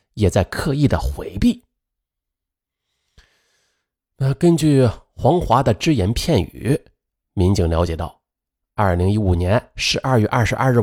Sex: male